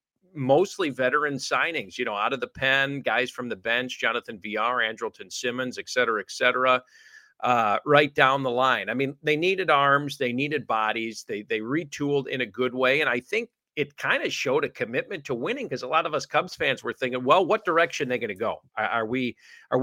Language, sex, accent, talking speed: English, male, American, 220 wpm